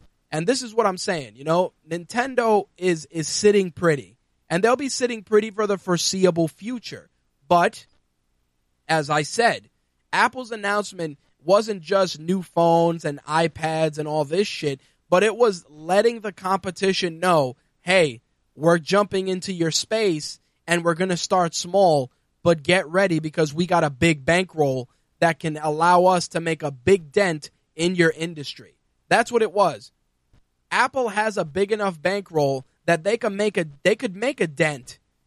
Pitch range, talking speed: 155-205 Hz, 165 wpm